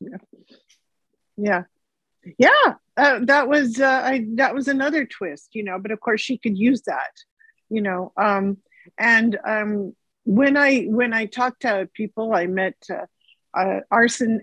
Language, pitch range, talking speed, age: English, 195-240 Hz, 155 wpm, 50-69